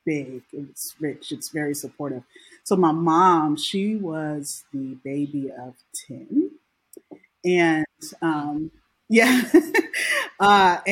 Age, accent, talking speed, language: 30-49, American, 105 wpm, English